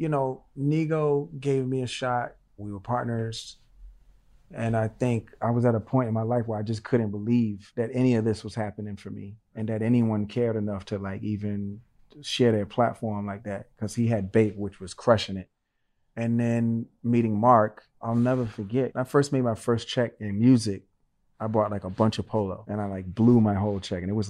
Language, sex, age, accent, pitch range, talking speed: English, male, 30-49, American, 105-125 Hz, 215 wpm